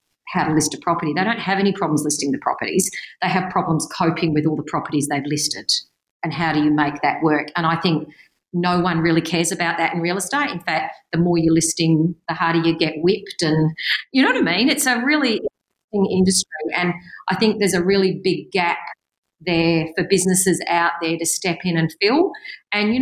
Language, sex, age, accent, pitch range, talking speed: English, female, 40-59, Australian, 160-205 Hz, 220 wpm